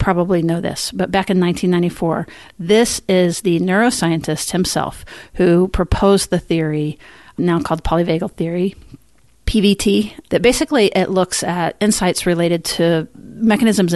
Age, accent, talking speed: 40-59, American, 130 wpm